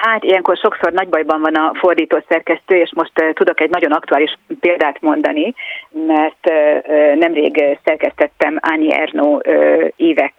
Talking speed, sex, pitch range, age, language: 140 wpm, female, 155-250 Hz, 40-59, Hungarian